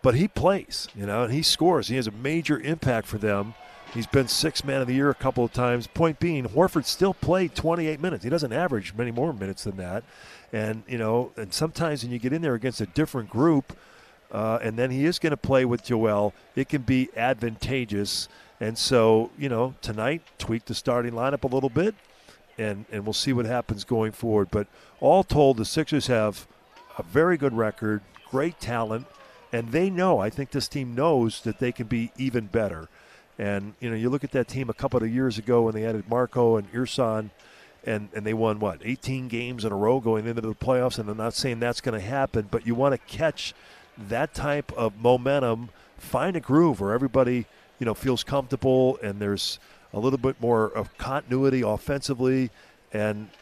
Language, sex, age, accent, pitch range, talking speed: English, male, 50-69, American, 110-135 Hz, 205 wpm